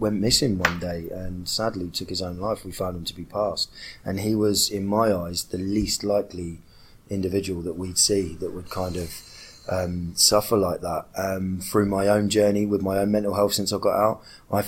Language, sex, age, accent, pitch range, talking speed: English, male, 20-39, British, 90-105 Hz, 215 wpm